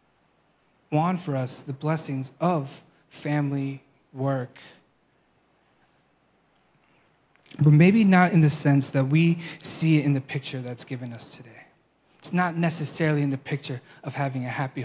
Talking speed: 140 wpm